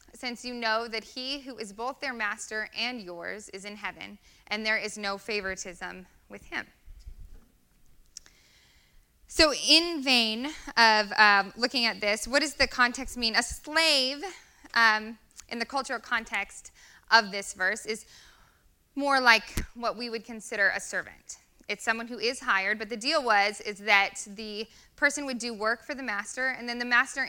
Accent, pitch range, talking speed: American, 205-255 Hz, 170 wpm